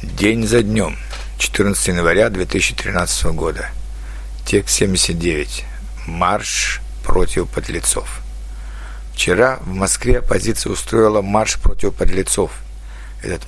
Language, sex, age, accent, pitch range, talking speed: Russian, male, 60-79, native, 80-110 Hz, 95 wpm